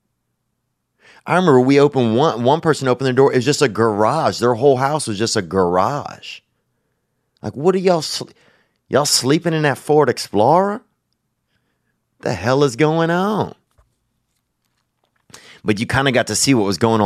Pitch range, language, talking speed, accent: 90-120 Hz, English, 165 wpm, American